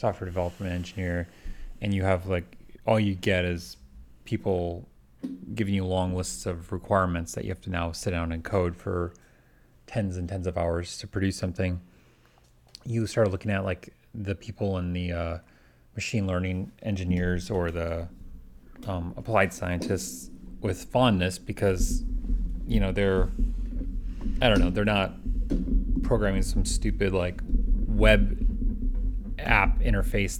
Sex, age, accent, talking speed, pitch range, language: male, 30-49, American, 140 wpm, 85-100 Hz, English